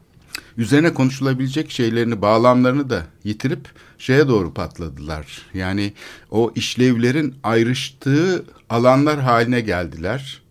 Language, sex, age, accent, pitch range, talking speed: Turkish, male, 60-79, native, 105-140 Hz, 90 wpm